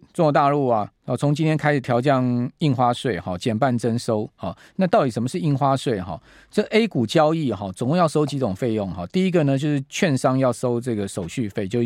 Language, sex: Chinese, male